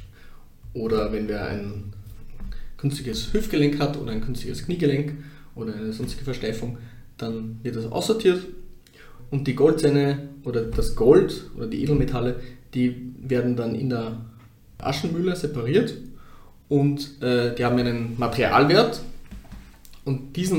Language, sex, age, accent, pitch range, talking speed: German, male, 20-39, German, 115-145 Hz, 125 wpm